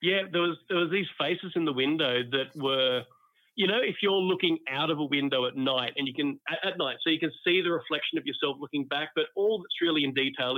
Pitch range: 130-165 Hz